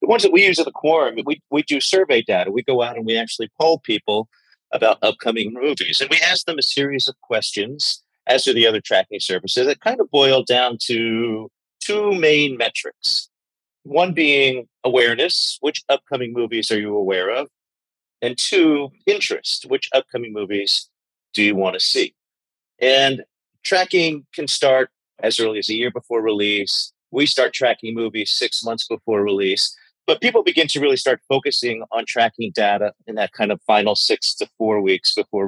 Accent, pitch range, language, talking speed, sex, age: American, 115-165 Hz, English, 185 wpm, male, 40-59